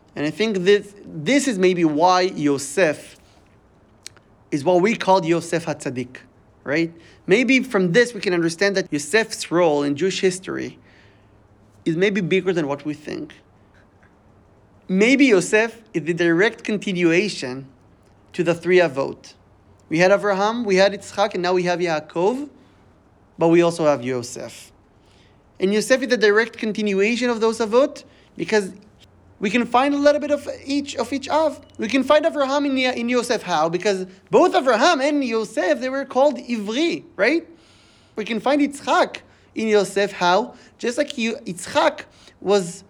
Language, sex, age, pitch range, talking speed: English, male, 30-49, 165-255 Hz, 155 wpm